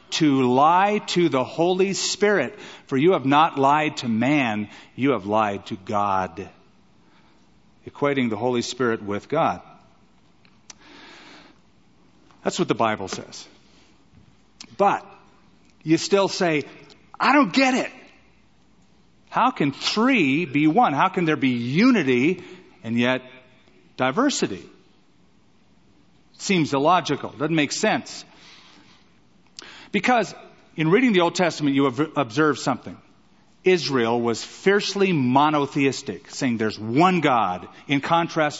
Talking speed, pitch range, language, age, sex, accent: 115 wpm, 130-175 Hz, English, 50-69, male, American